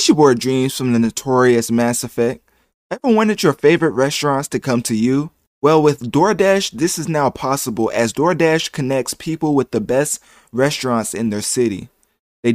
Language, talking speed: English, 170 wpm